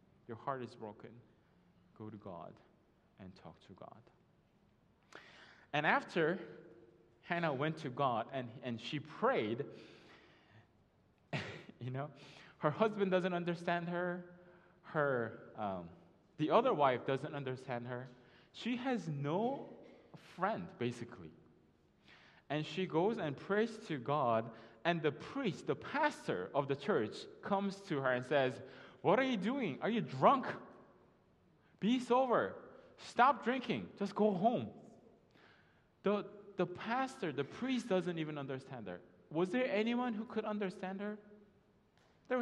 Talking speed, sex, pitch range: 130 wpm, male, 125-205 Hz